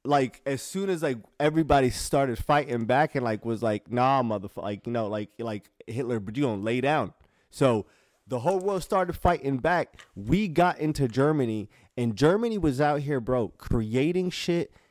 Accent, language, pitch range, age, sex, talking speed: American, English, 110-155 Hz, 20-39, male, 180 wpm